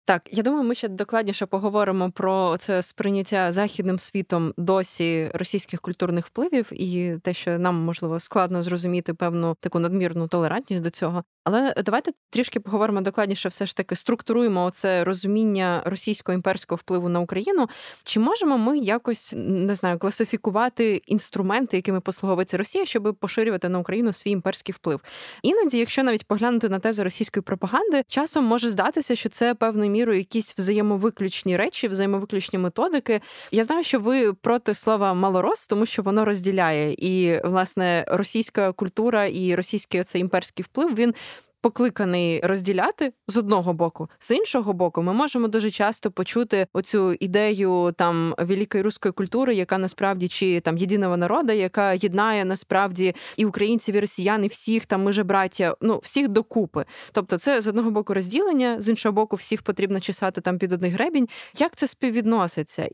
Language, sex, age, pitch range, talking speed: Ukrainian, female, 20-39, 185-225 Hz, 155 wpm